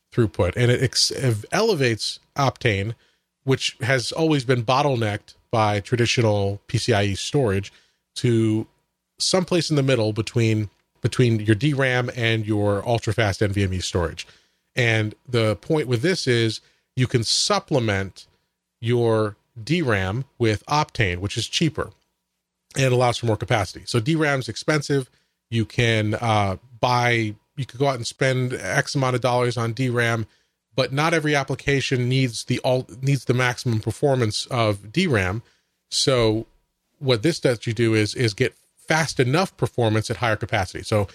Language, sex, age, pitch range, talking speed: English, male, 30-49, 110-135 Hz, 145 wpm